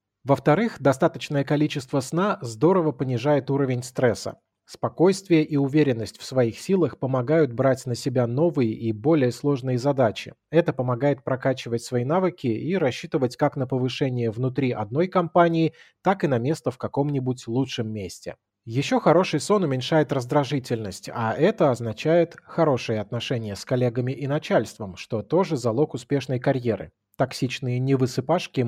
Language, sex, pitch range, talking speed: Russian, male, 120-155 Hz, 135 wpm